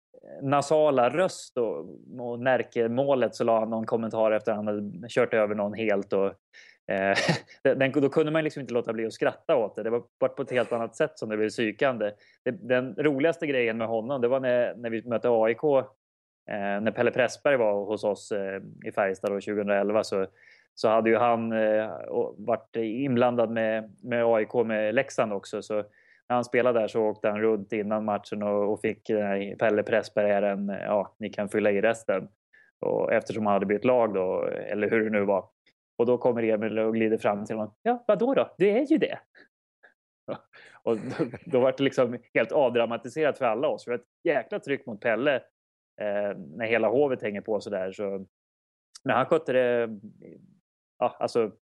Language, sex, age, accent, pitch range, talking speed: English, male, 20-39, Swedish, 105-130 Hz, 195 wpm